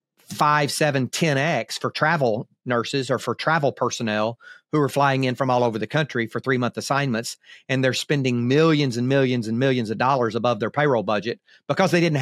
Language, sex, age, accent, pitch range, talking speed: English, male, 40-59, American, 125-160 Hz, 200 wpm